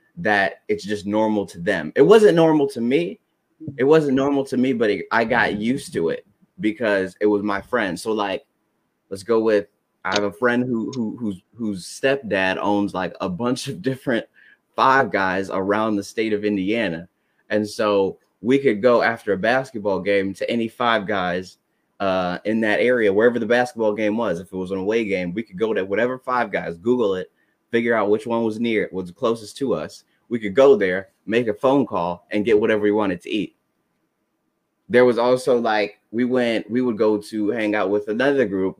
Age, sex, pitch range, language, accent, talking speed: 20-39, male, 100-125 Hz, English, American, 205 wpm